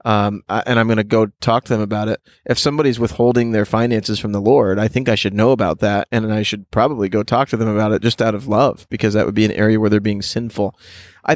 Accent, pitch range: American, 105-125 Hz